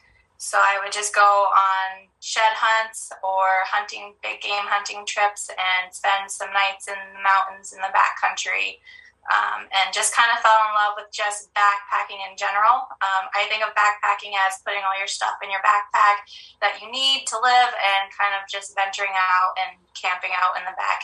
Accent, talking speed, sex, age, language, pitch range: American, 195 wpm, female, 10-29, English, 195-215 Hz